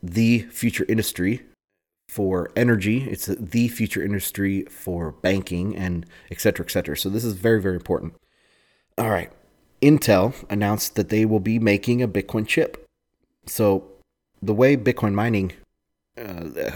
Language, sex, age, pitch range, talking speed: English, male, 30-49, 90-110 Hz, 145 wpm